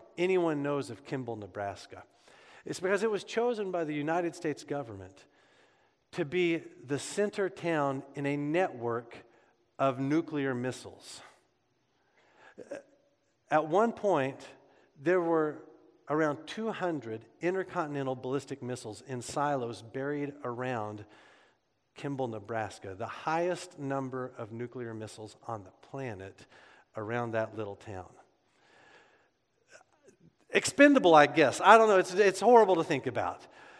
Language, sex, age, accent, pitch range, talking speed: English, male, 50-69, American, 135-190 Hz, 120 wpm